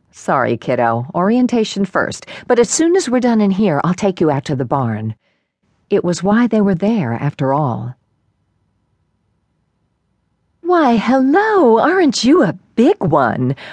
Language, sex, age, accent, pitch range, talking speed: English, female, 50-69, American, 130-205 Hz, 150 wpm